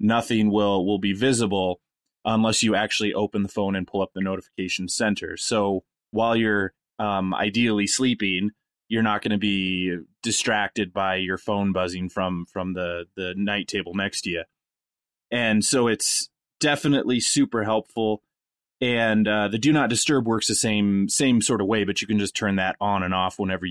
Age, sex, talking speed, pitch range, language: 20-39, male, 180 wpm, 95-110 Hz, English